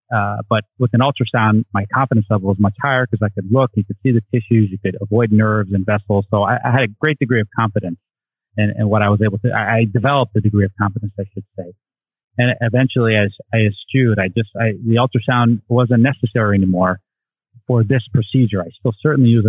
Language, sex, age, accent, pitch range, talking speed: English, male, 30-49, American, 105-125 Hz, 220 wpm